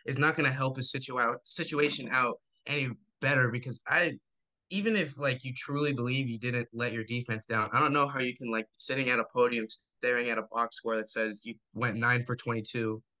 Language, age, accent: English, 10-29, American